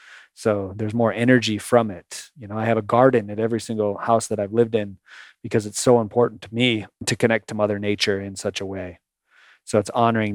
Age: 30-49